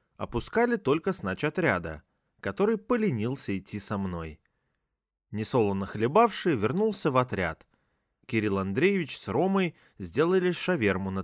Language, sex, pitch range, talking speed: Russian, male, 100-160 Hz, 110 wpm